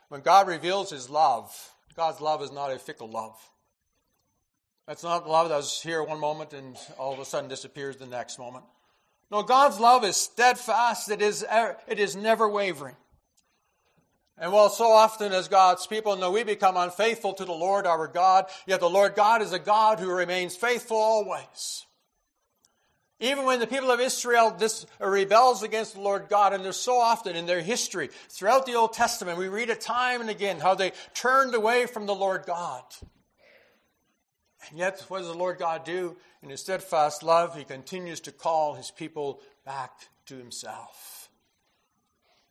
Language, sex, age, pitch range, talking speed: English, male, 50-69, 150-220 Hz, 175 wpm